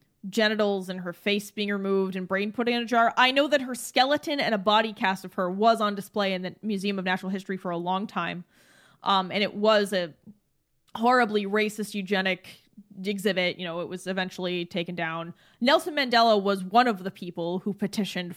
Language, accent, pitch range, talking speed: English, American, 190-275 Hz, 200 wpm